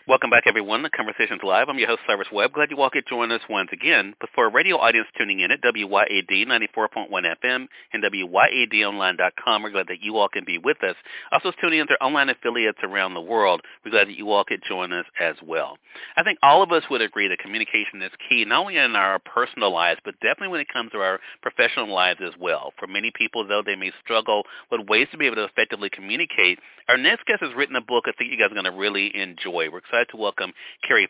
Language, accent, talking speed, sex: English, American, 240 wpm, male